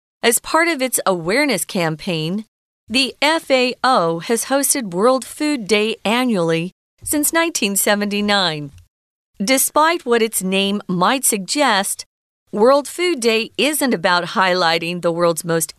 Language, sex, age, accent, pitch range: Chinese, female, 40-59, American, 180-260 Hz